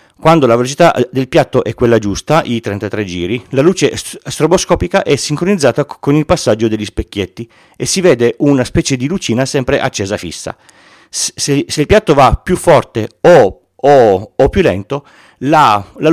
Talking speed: 160 wpm